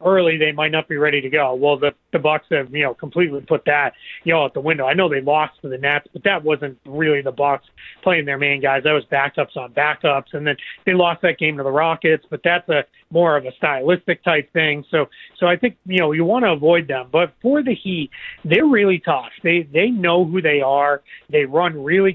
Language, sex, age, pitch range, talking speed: English, male, 30-49, 145-180 Hz, 245 wpm